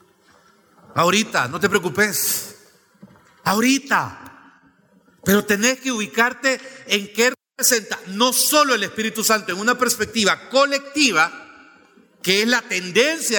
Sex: male